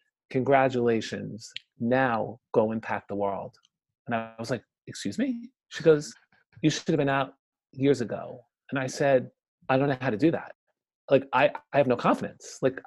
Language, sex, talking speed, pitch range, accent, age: English, male, 175 wpm, 125-165 Hz, American, 40-59